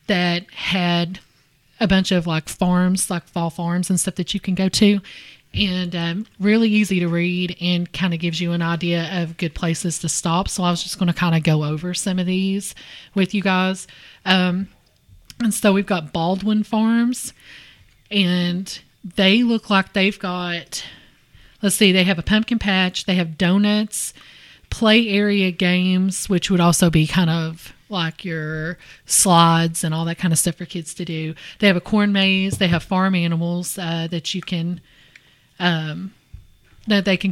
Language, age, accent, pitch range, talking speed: English, 30-49, American, 170-195 Hz, 180 wpm